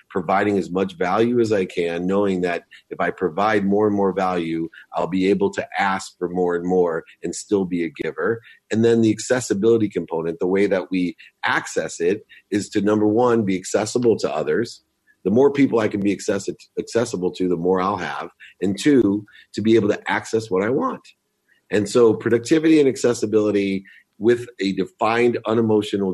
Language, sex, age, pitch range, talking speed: English, male, 40-59, 95-115 Hz, 185 wpm